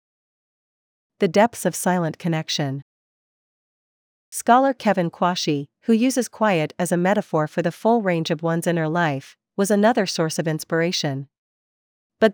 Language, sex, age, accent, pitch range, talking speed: English, female, 40-59, American, 160-195 Hz, 135 wpm